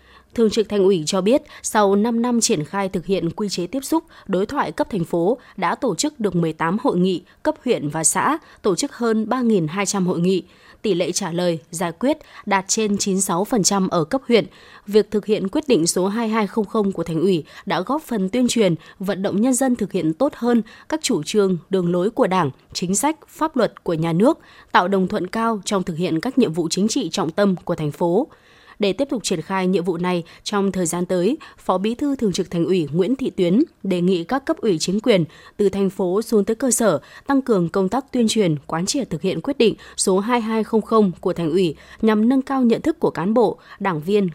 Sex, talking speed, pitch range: female, 225 wpm, 180-230 Hz